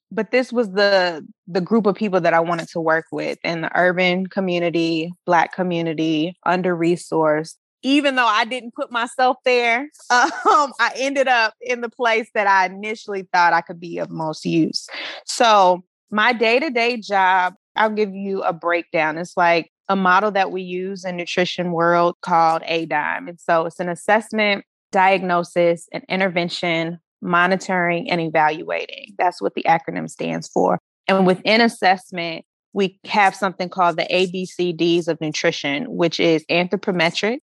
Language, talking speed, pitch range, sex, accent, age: English, 155 wpm, 165-205 Hz, female, American, 20-39